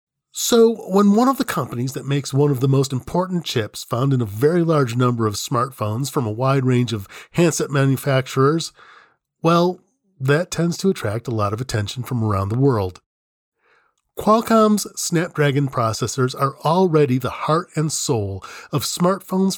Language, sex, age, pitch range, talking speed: English, male, 40-59, 115-160 Hz, 160 wpm